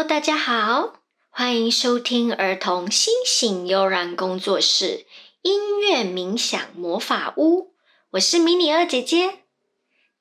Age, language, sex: 20-39, Chinese, male